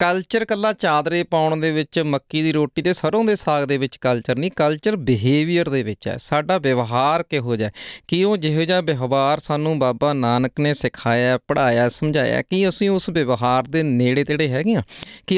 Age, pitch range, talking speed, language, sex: 30-49, 125-160 Hz, 215 wpm, Punjabi, male